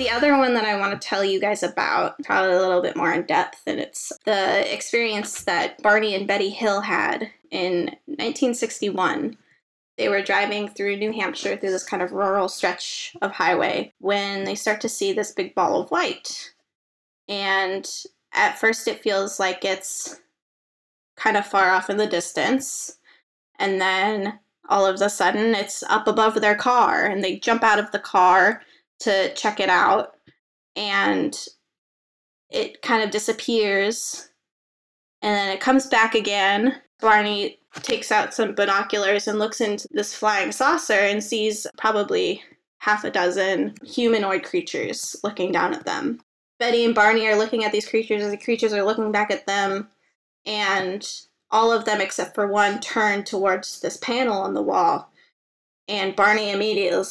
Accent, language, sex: American, English, female